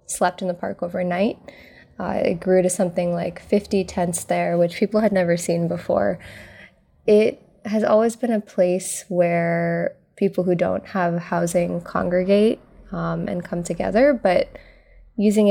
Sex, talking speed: female, 150 wpm